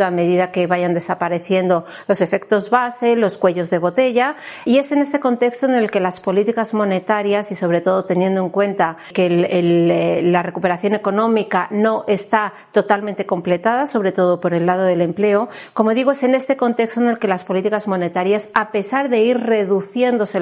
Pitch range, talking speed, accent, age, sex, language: 185-230 Hz, 180 wpm, Spanish, 40-59, female, Spanish